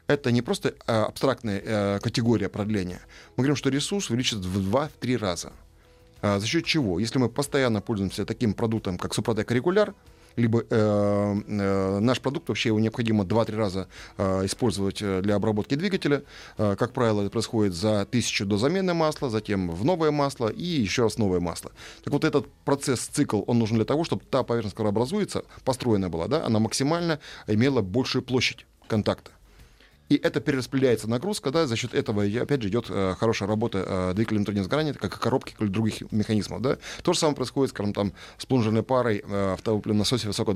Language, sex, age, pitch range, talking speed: Russian, male, 20-39, 100-130 Hz, 170 wpm